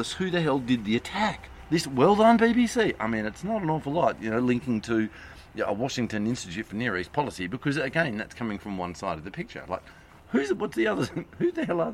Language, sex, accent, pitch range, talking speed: English, male, Australian, 95-145 Hz, 230 wpm